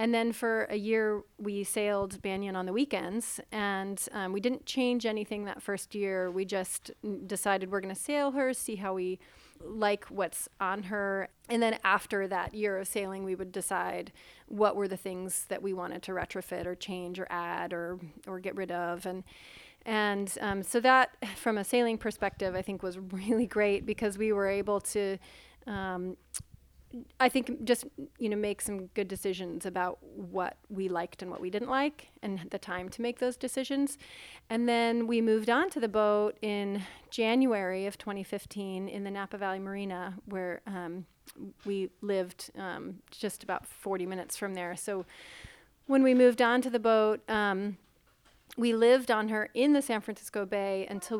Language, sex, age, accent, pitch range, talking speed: English, female, 30-49, American, 190-230 Hz, 180 wpm